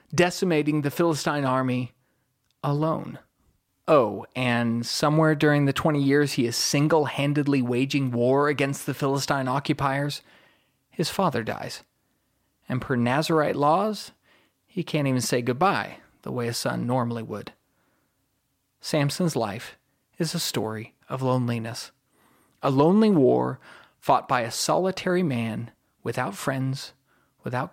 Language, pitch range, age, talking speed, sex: English, 125-155 Hz, 30-49, 125 wpm, male